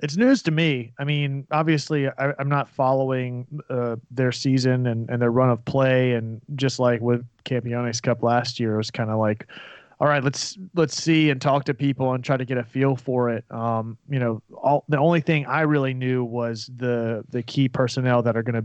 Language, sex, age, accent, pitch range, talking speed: English, male, 30-49, American, 120-135 Hz, 225 wpm